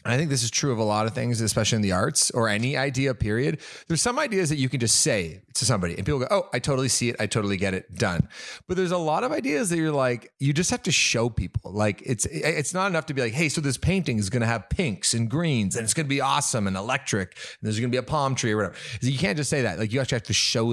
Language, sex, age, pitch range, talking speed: English, male, 30-49, 105-140 Hz, 290 wpm